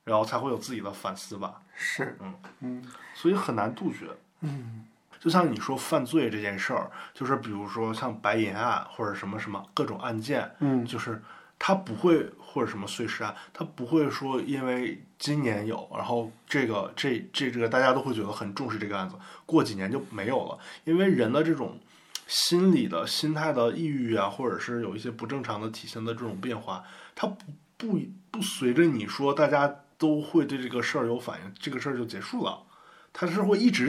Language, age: Chinese, 20-39